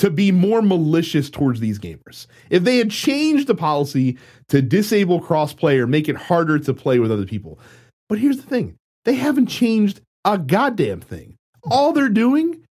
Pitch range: 130-220 Hz